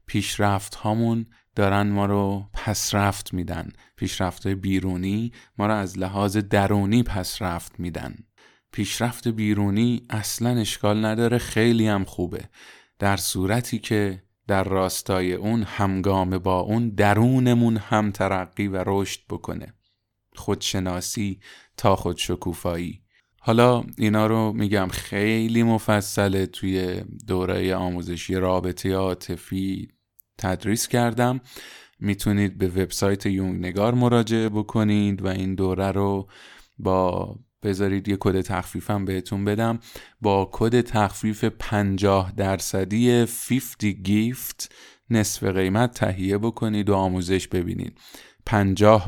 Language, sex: Persian, male